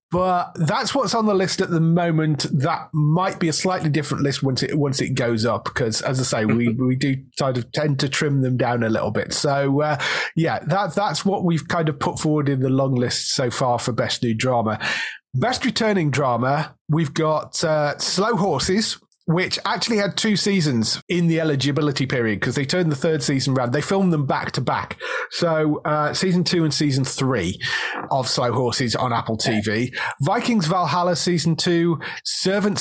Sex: male